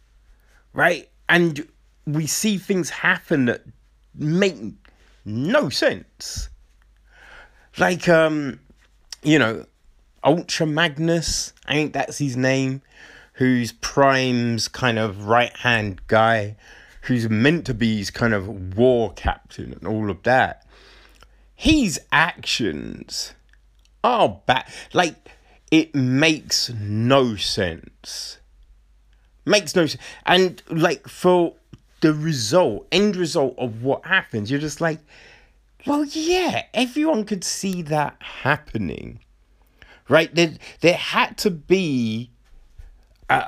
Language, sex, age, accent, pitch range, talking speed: English, male, 30-49, British, 115-170 Hz, 110 wpm